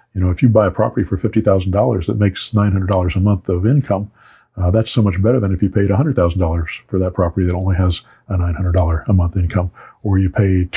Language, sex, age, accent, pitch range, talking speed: English, male, 50-69, American, 90-110 Hz, 225 wpm